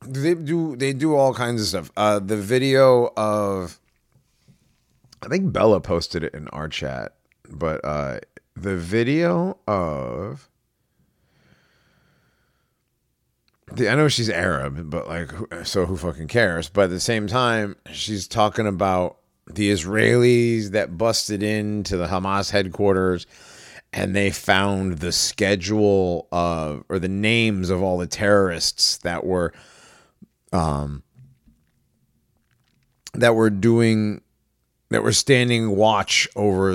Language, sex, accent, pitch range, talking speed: English, male, American, 75-110 Hz, 125 wpm